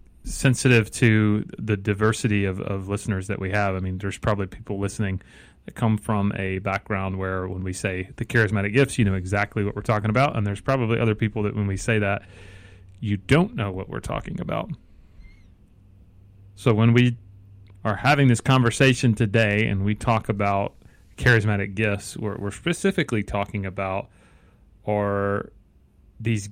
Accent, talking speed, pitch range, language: American, 165 wpm, 95-110 Hz, English